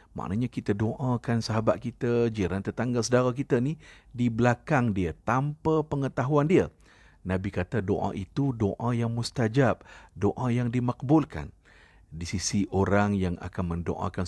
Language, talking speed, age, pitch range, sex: Malay, 135 wpm, 50-69, 90-115 Hz, male